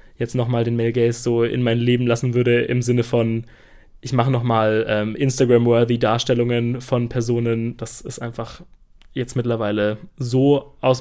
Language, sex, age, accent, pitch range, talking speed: German, male, 20-39, German, 120-135 Hz, 160 wpm